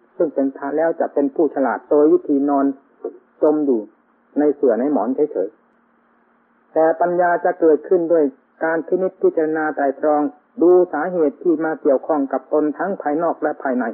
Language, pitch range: Thai, 145-165 Hz